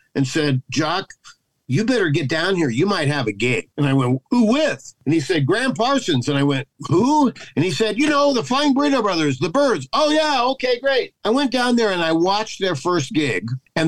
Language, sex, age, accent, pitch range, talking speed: English, male, 50-69, American, 140-185 Hz, 230 wpm